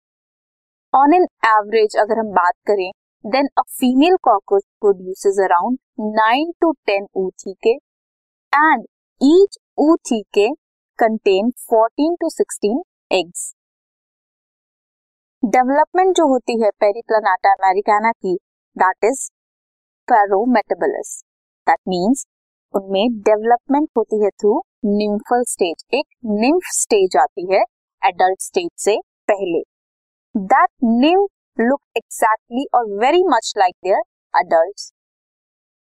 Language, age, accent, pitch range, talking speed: Hindi, 20-39, native, 205-280 Hz, 105 wpm